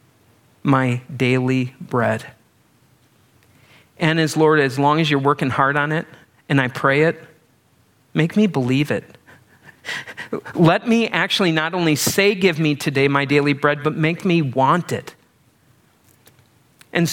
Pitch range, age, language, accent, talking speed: 135-175 Hz, 40-59, English, American, 140 wpm